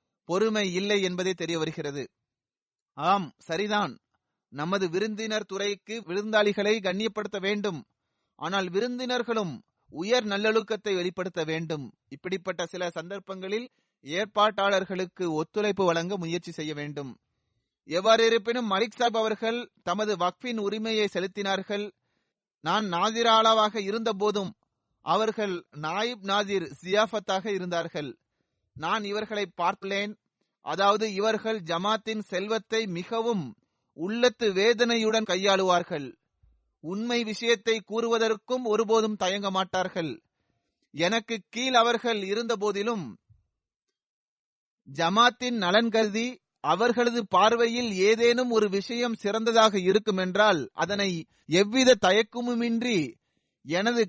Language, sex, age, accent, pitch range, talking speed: Tamil, male, 30-49, native, 185-225 Hz, 90 wpm